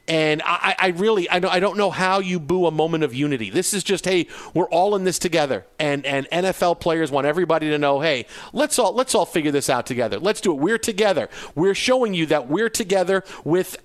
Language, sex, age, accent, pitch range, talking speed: English, male, 40-59, American, 155-205 Hz, 225 wpm